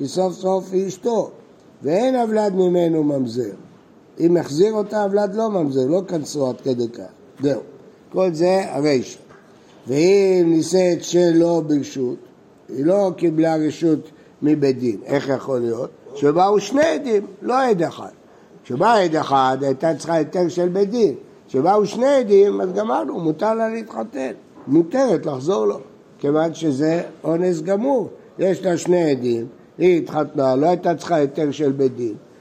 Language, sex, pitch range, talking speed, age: Hebrew, male, 150-195 Hz, 145 wpm, 60-79